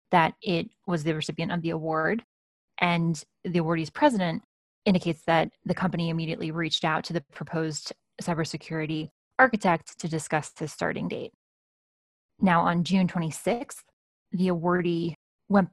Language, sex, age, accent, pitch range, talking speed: English, female, 20-39, American, 165-190 Hz, 135 wpm